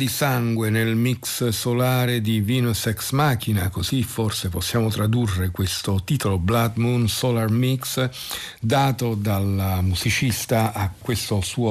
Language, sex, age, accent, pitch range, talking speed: Italian, male, 50-69, native, 100-120 Hz, 125 wpm